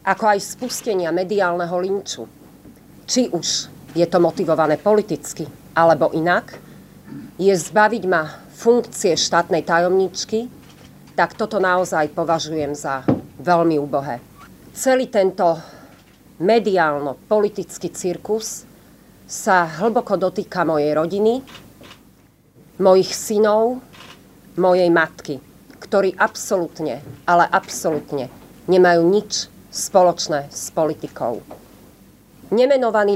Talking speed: 90 wpm